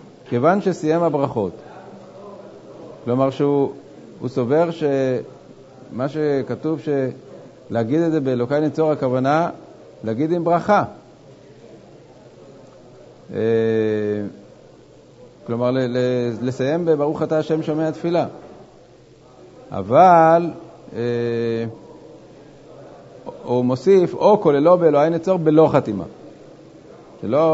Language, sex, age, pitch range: Hebrew, male, 50-69, 125-165 Hz